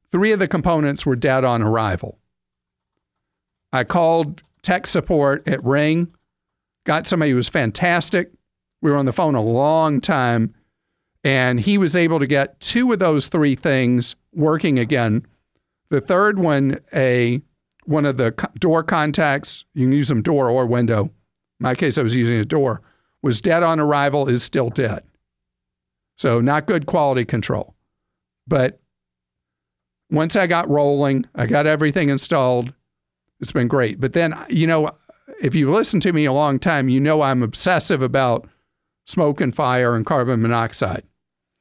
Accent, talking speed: American, 160 wpm